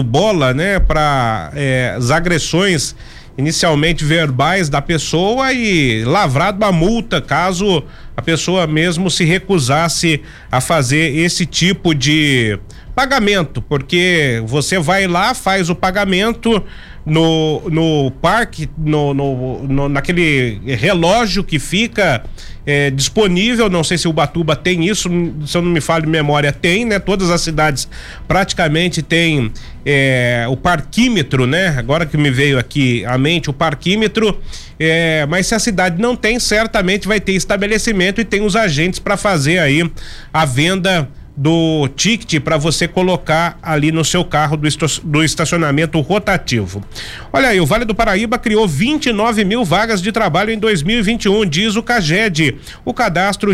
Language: Portuguese